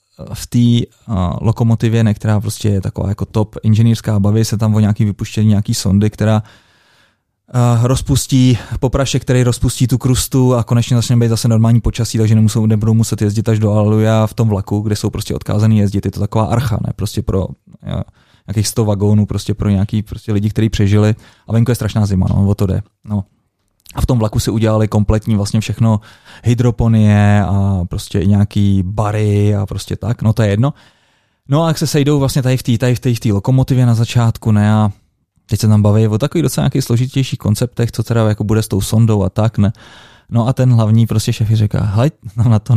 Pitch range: 105-120 Hz